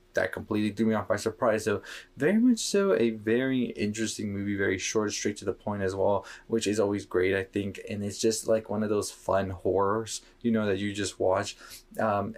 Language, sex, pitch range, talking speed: English, male, 95-115 Hz, 220 wpm